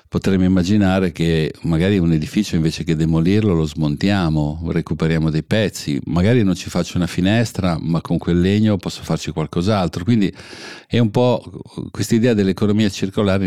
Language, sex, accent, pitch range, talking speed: Italian, male, native, 80-100 Hz, 155 wpm